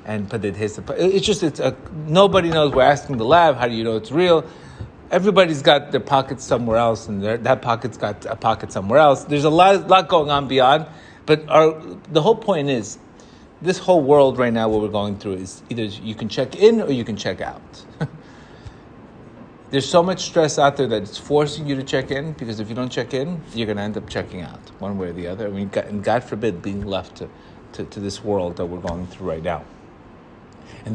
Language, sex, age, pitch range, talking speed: English, male, 30-49, 110-150 Hz, 220 wpm